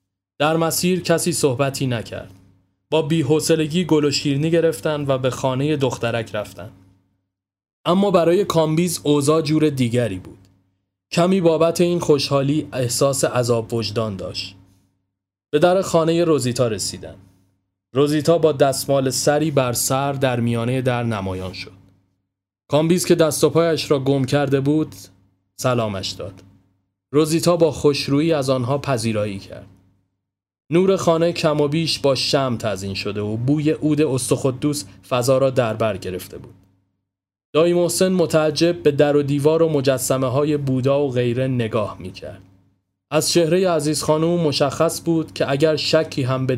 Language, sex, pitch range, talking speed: Persian, male, 100-155 Hz, 140 wpm